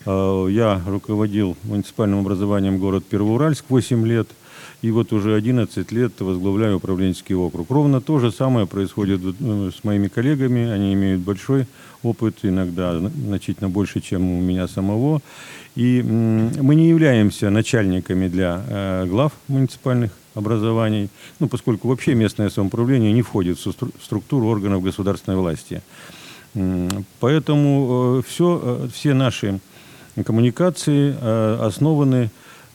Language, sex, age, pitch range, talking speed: Russian, male, 50-69, 100-130 Hz, 115 wpm